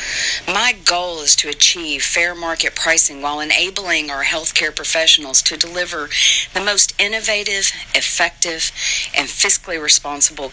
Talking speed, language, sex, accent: 125 wpm, English, female, American